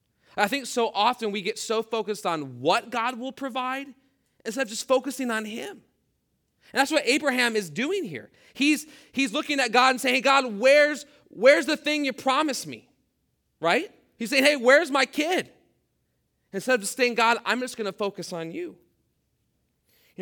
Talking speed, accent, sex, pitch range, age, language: 185 wpm, American, male, 175-250 Hz, 30-49, English